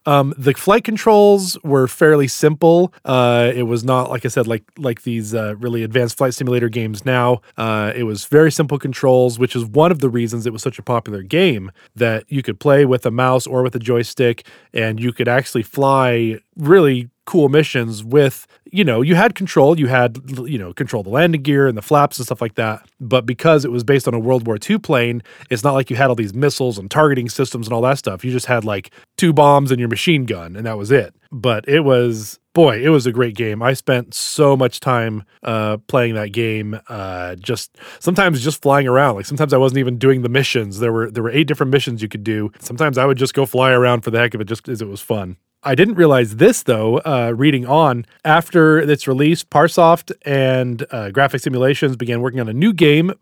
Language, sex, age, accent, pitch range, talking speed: English, male, 20-39, American, 120-145 Hz, 230 wpm